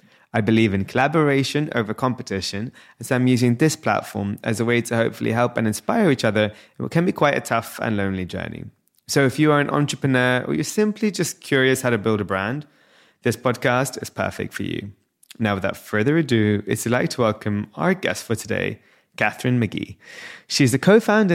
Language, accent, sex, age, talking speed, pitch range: English, British, male, 20-39, 195 wpm, 105-140 Hz